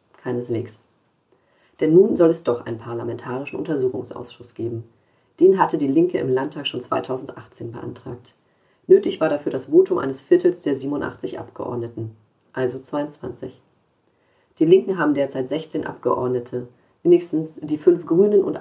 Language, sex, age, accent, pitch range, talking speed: German, female, 30-49, German, 125-180 Hz, 135 wpm